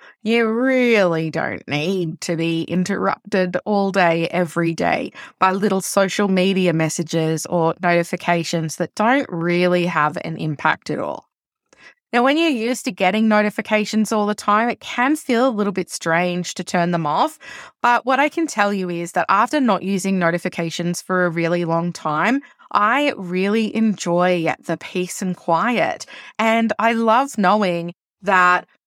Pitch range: 175-220 Hz